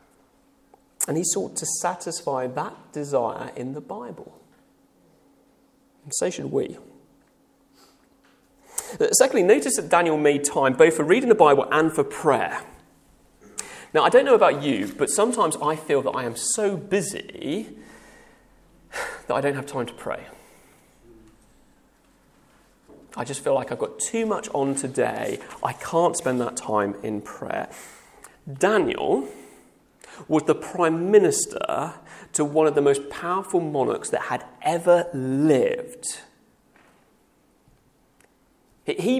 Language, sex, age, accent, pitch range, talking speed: English, male, 30-49, British, 135-205 Hz, 130 wpm